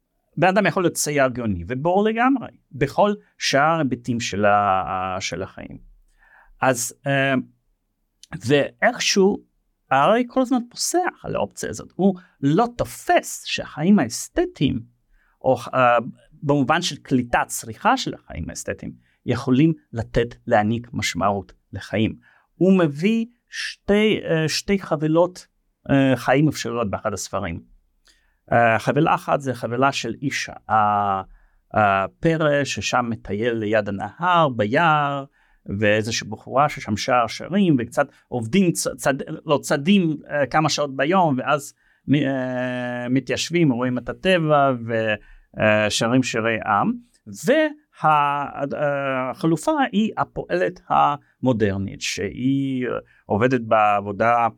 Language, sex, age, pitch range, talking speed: Hebrew, male, 40-59, 110-160 Hz, 110 wpm